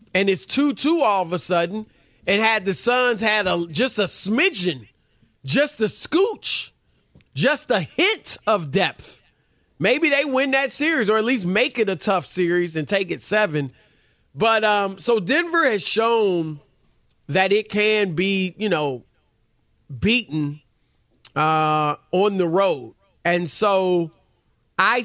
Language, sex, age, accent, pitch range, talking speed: English, male, 30-49, American, 160-205 Hz, 145 wpm